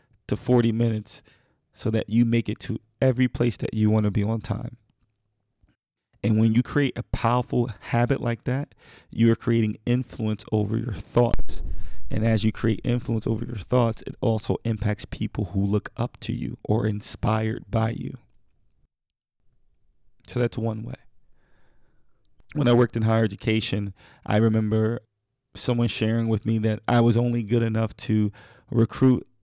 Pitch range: 110-120 Hz